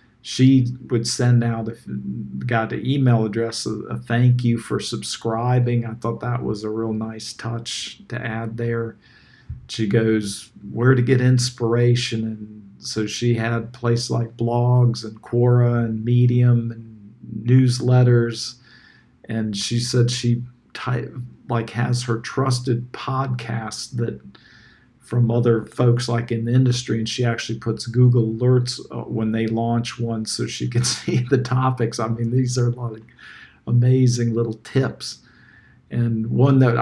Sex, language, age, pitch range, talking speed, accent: male, English, 50-69, 115-125 Hz, 150 wpm, American